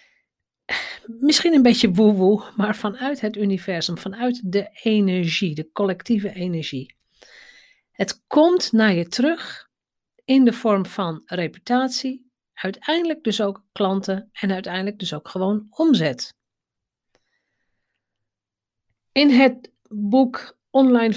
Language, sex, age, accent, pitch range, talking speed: Dutch, female, 40-59, Dutch, 180-235 Hz, 110 wpm